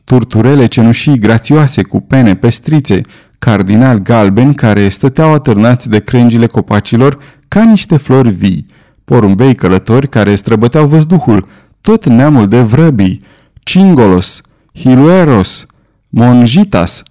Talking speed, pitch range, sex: 105 wpm, 110-150 Hz, male